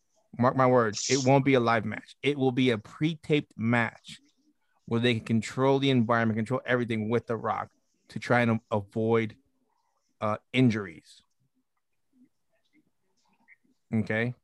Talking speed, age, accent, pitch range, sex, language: 135 wpm, 30-49, American, 110-130 Hz, male, English